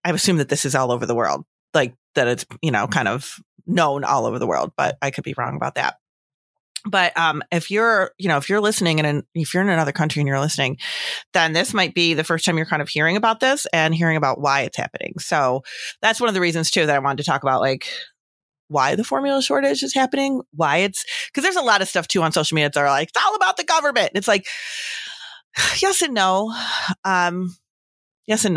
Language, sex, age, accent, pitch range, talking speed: English, female, 30-49, American, 145-195 Hz, 235 wpm